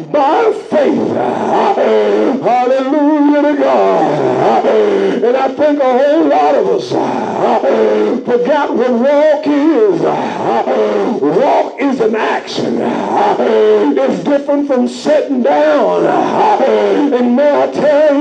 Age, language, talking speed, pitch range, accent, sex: 60-79, English, 100 wpm, 255-300 Hz, American, male